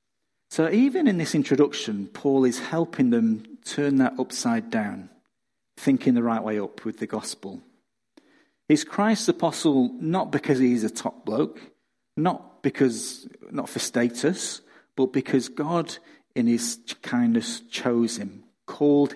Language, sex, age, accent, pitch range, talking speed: English, male, 40-59, British, 120-180 Hz, 140 wpm